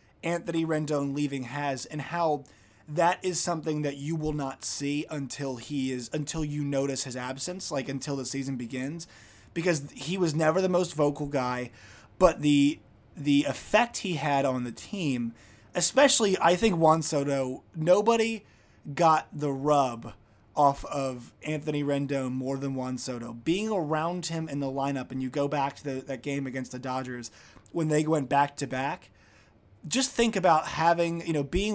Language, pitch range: English, 130-165 Hz